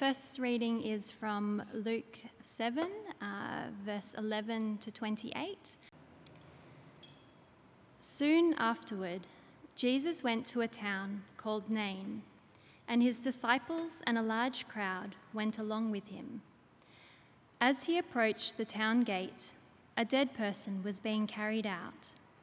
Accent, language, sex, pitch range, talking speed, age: Australian, English, female, 215-255 Hz, 120 wpm, 20-39